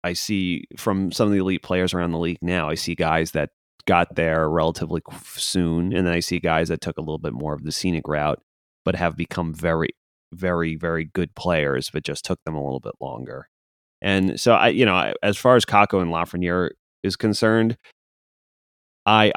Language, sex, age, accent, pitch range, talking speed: English, male, 30-49, American, 75-95 Hz, 200 wpm